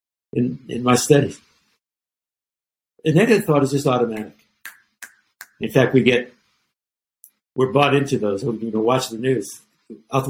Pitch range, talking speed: 125-175 Hz, 145 wpm